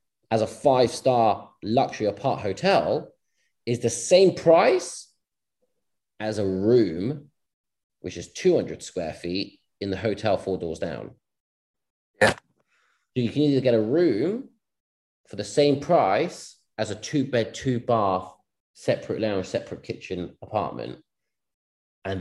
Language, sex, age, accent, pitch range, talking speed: English, male, 30-49, British, 105-150 Hz, 125 wpm